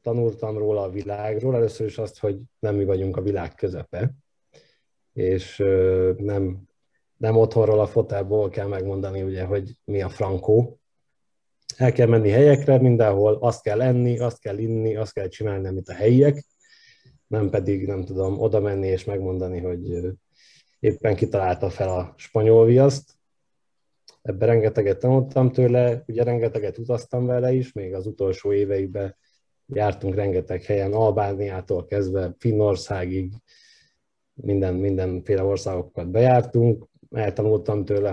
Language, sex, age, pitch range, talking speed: Hungarian, male, 30-49, 95-120 Hz, 130 wpm